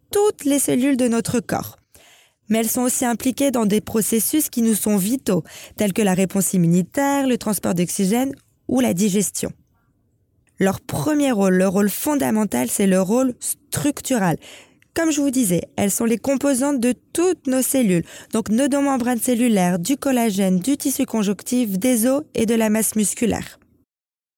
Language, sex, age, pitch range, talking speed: French, female, 20-39, 215-285 Hz, 165 wpm